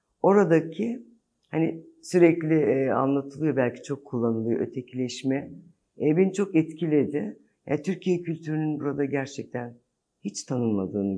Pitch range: 115-160 Hz